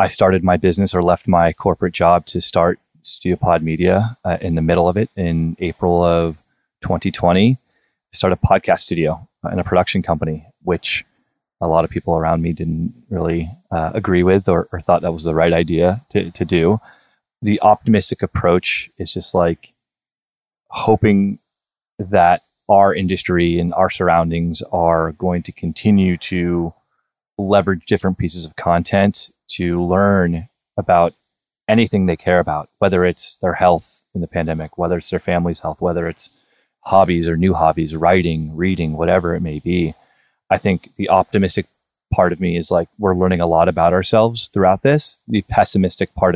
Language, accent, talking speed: English, American, 165 wpm